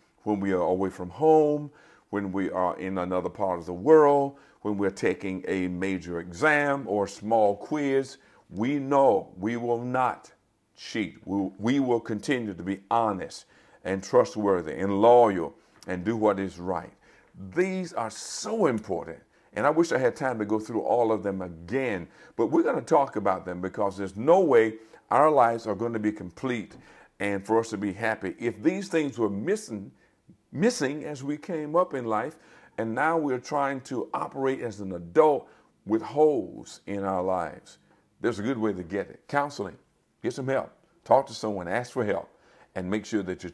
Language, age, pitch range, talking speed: English, 50-69, 95-135 Hz, 185 wpm